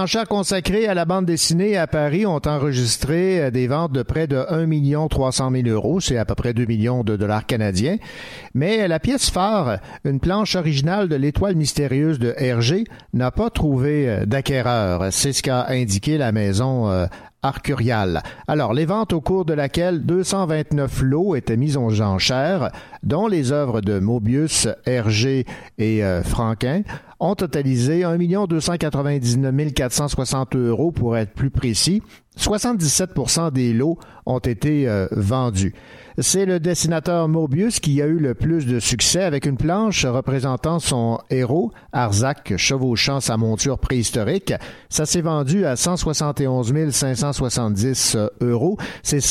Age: 60-79